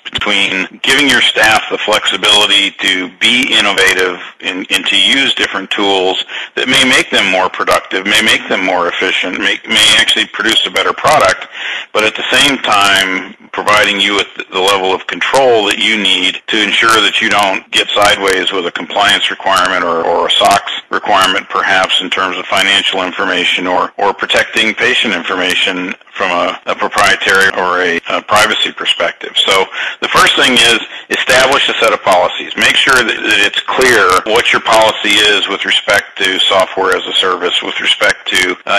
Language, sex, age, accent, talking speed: English, male, 50-69, American, 175 wpm